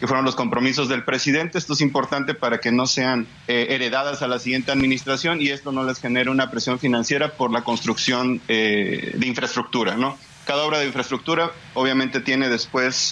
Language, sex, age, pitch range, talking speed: Spanish, male, 30-49, 125-145 Hz, 190 wpm